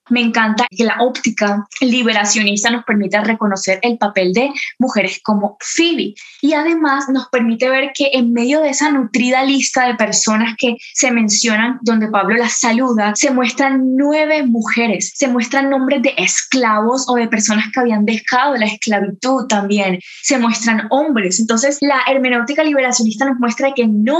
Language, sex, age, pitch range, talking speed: Spanish, female, 10-29, 215-265 Hz, 160 wpm